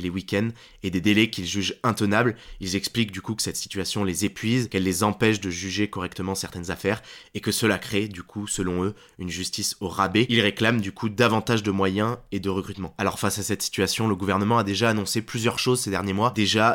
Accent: French